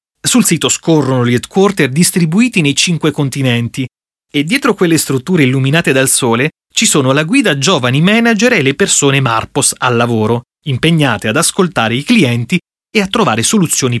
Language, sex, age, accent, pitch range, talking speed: Italian, male, 30-49, native, 130-170 Hz, 160 wpm